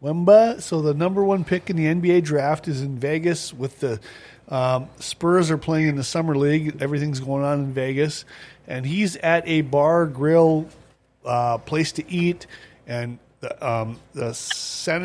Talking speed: 170 wpm